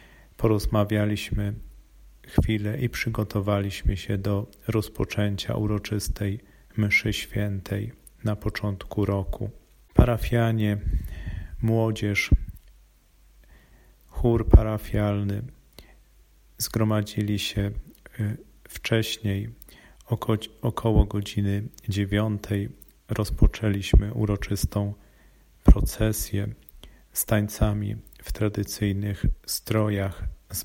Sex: male